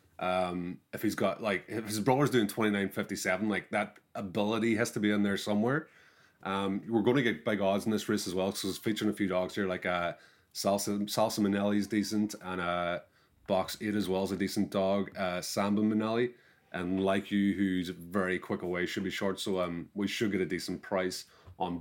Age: 30-49